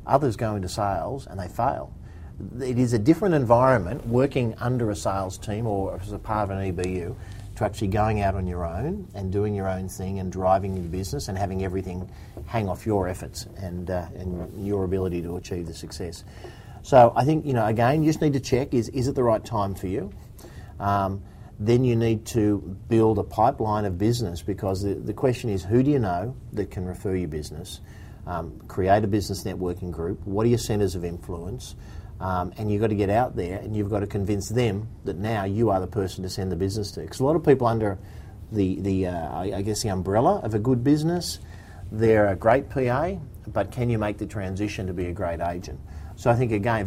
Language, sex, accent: English, male, Australian